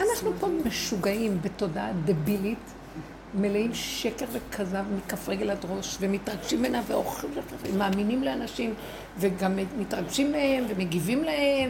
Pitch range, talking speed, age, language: 200-300 Hz, 115 wpm, 60-79, Hebrew